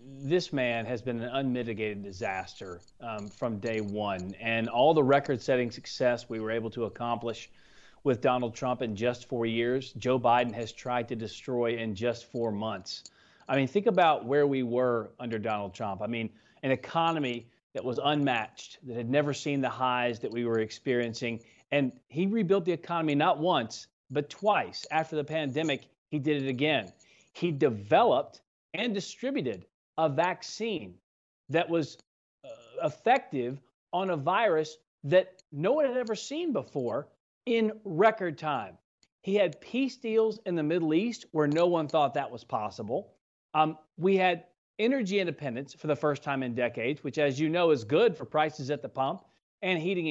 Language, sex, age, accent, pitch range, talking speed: English, male, 40-59, American, 120-170 Hz, 170 wpm